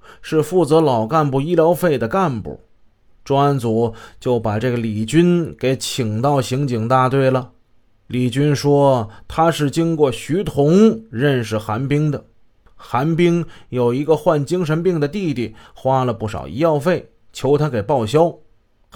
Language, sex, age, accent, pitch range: Chinese, male, 20-39, native, 115-165 Hz